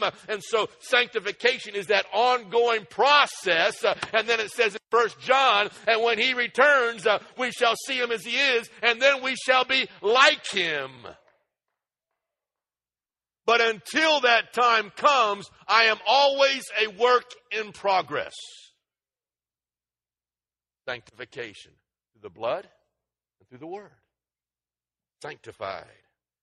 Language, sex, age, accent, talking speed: English, male, 60-79, American, 125 wpm